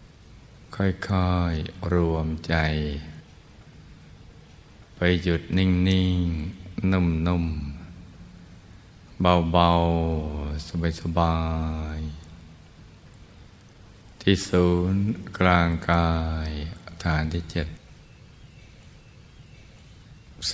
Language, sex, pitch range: Thai, male, 80-90 Hz